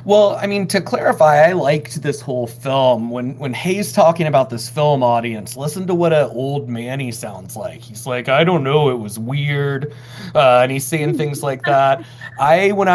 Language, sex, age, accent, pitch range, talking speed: English, male, 30-49, American, 125-155 Hz, 205 wpm